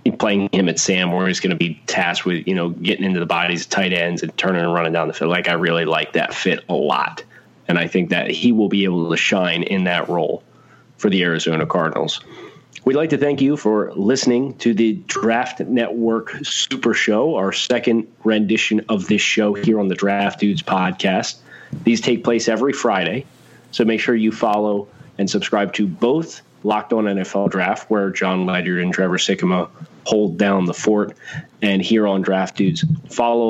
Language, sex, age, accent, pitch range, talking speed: English, male, 30-49, American, 95-115 Hz, 200 wpm